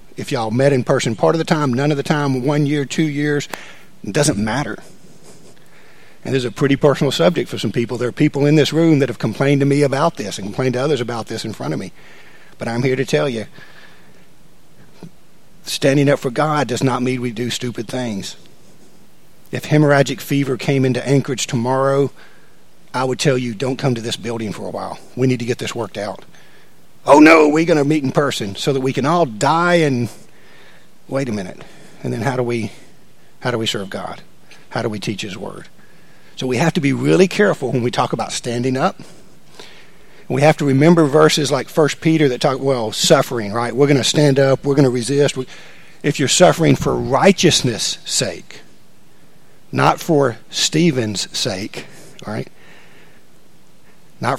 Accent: American